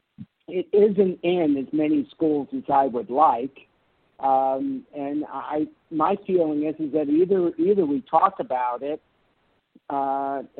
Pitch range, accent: 140-165 Hz, American